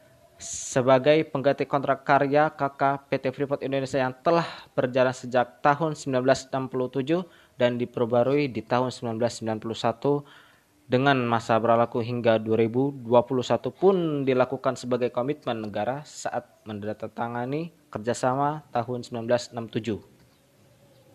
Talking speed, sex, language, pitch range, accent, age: 95 wpm, male, Indonesian, 120-145 Hz, native, 20-39